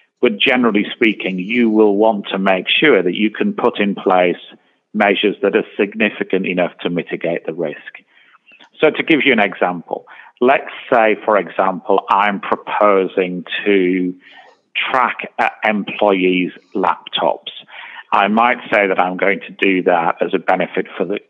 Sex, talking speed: male, 155 wpm